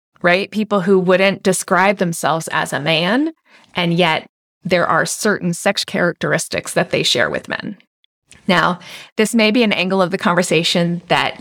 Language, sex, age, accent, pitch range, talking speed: English, female, 30-49, American, 180-215 Hz, 165 wpm